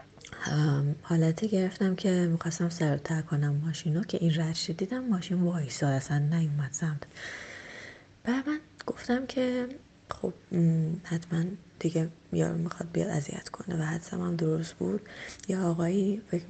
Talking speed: 125 wpm